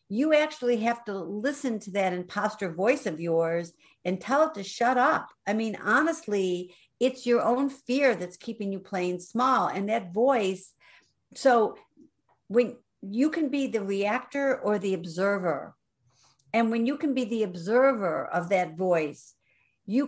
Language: English